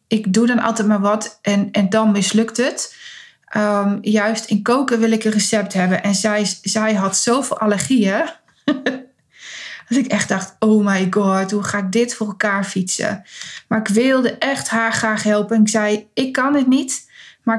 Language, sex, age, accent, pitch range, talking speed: Dutch, female, 20-39, Dutch, 210-235 Hz, 180 wpm